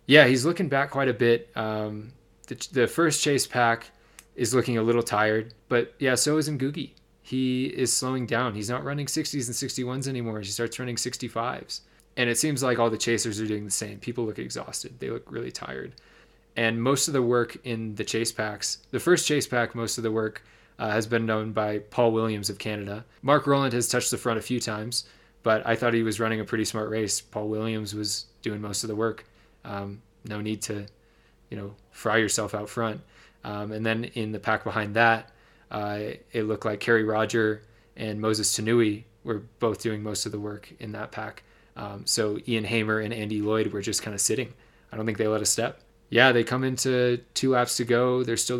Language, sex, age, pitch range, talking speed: English, male, 20-39, 110-125 Hz, 215 wpm